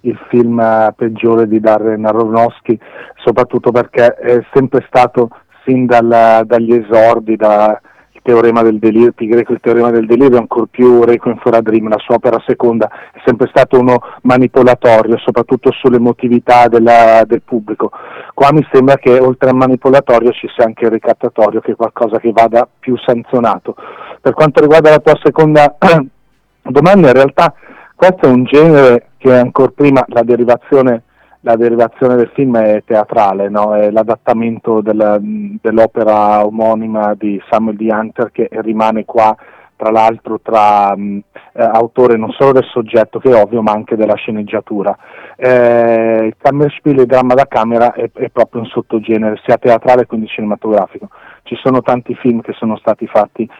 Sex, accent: male, native